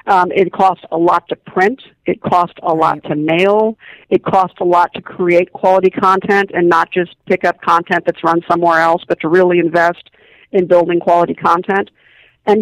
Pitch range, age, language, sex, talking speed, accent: 175-200 Hz, 50-69, English, female, 185 wpm, American